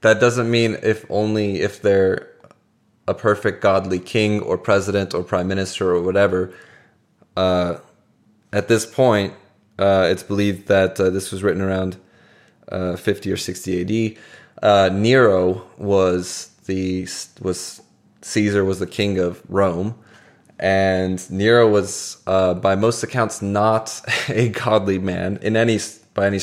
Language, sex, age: English, male, 20-39